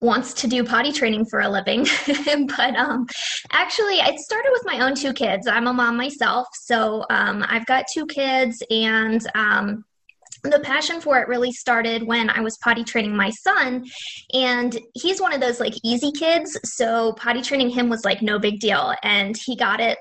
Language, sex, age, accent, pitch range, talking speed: English, female, 20-39, American, 225-265 Hz, 190 wpm